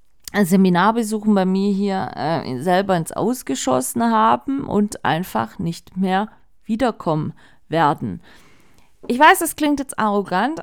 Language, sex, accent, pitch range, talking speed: German, female, German, 185-235 Hz, 120 wpm